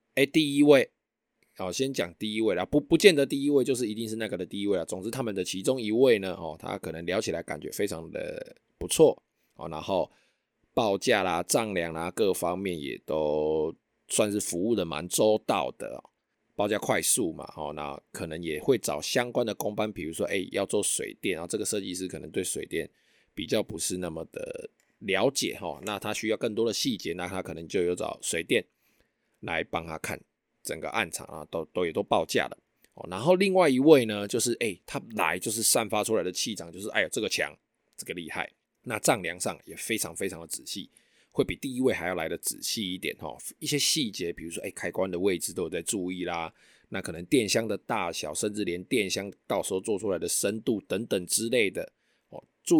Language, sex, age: Chinese, male, 20-39